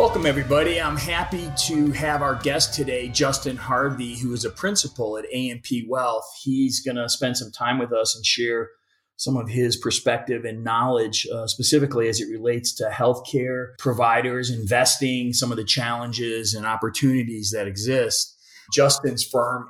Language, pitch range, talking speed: English, 115-130 Hz, 160 wpm